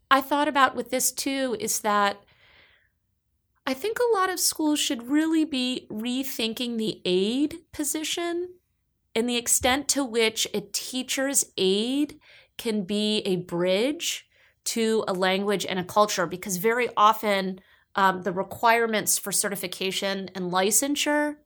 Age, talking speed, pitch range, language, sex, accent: 30-49, 135 wpm, 180-225 Hz, English, female, American